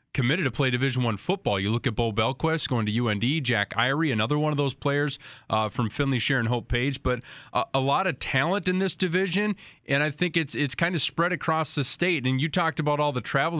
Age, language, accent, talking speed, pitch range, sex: 20-39, English, American, 240 wpm, 115-145 Hz, male